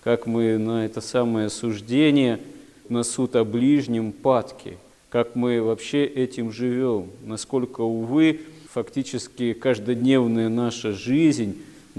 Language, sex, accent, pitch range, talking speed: Russian, male, native, 105-120 Hz, 110 wpm